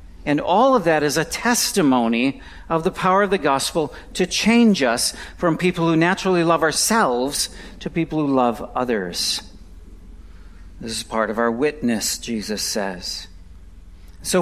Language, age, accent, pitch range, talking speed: English, 50-69, American, 120-190 Hz, 150 wpm